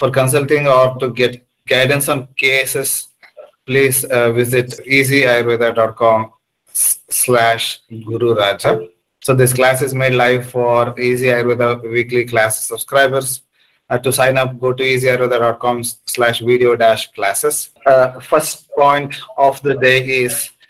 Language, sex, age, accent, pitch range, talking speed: English, male, 30-49, Indian, 125-150 Hz, 120 wpm